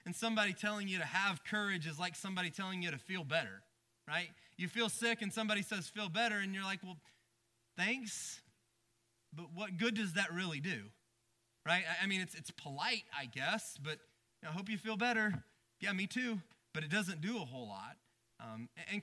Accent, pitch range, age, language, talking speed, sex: American, 145-205 Hz, 30-49, English, 200 wpm, male